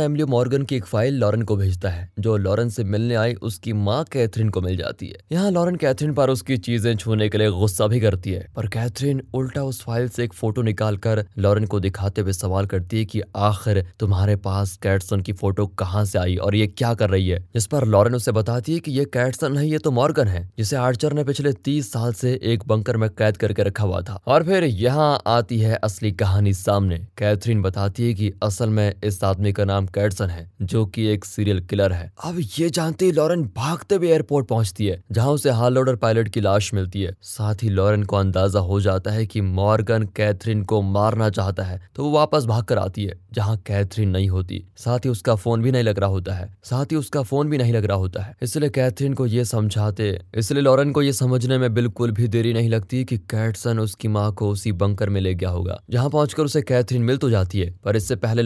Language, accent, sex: Hindi, native, male